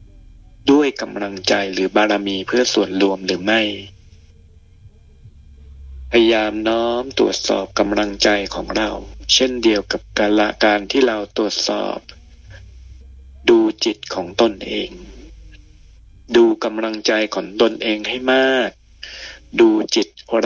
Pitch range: 95-115 Hz